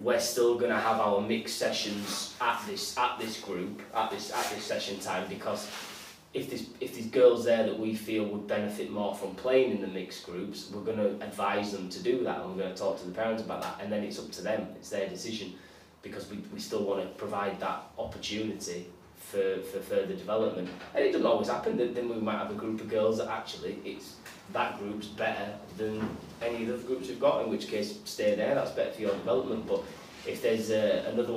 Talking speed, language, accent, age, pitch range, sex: 220 wpm, English, British, 20-39, 95-115 Hz, male